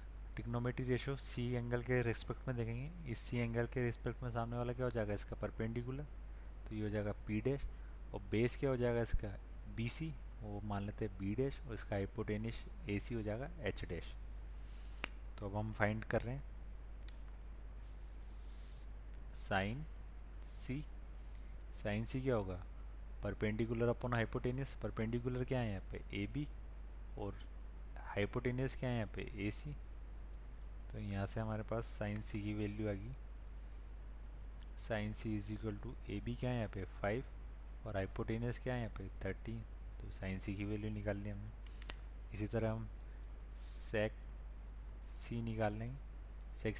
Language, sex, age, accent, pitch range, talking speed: Hindi, male, 20-39, native, 100-120 Hz, 155 wpm